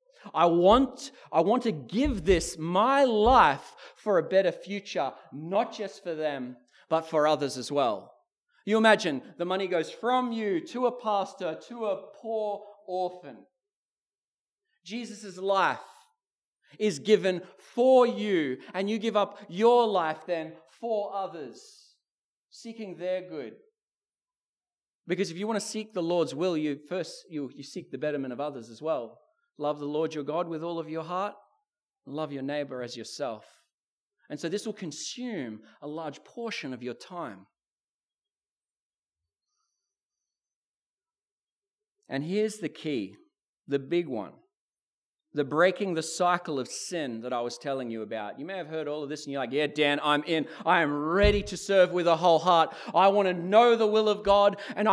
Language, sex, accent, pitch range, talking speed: English, male, Australian, 155-225 Hz, 165 wpm